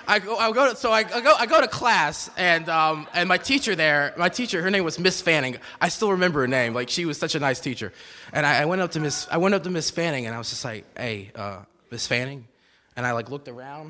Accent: American